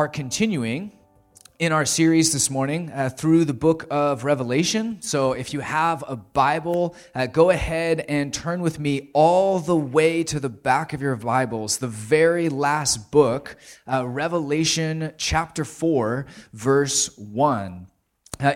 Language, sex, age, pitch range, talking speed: English, male, 20-39, 130-165 Hz, 140 wpm